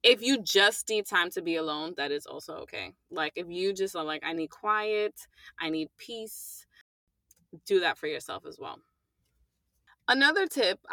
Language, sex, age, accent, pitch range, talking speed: English, female, 20-39, American, 175-235 Hz, 175 wpm